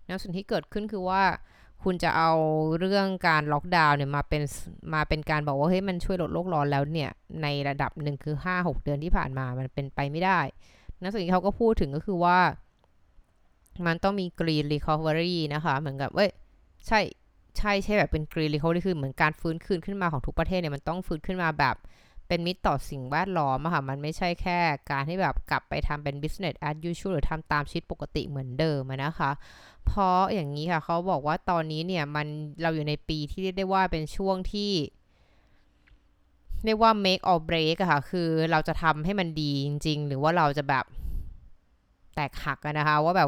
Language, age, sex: Thai, 20-39, female